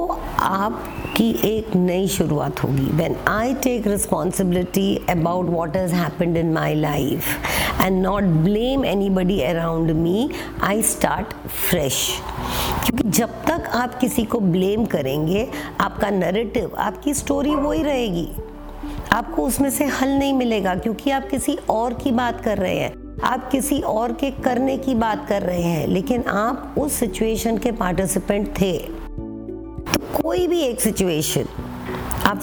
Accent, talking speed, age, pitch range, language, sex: native, 140 wpm, 50-69, 180-245 Hz, Hindi, female